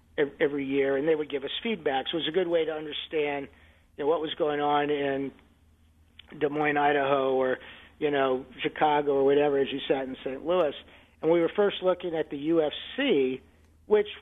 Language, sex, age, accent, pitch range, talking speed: English, male, 50-69, American, 140-165 Hz, 200 wpm